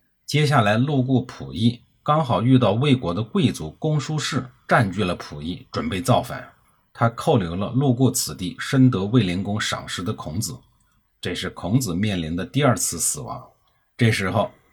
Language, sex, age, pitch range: Chinese, male, 50-69, 100-130 Hz